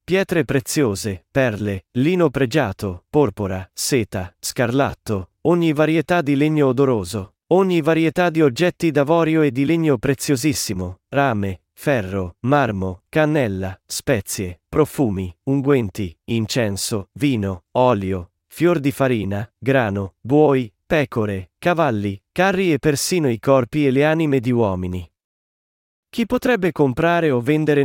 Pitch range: 105-155 Hz